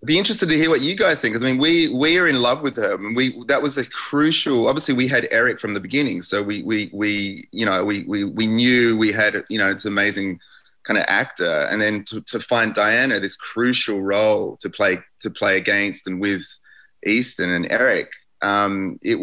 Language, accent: English, Australian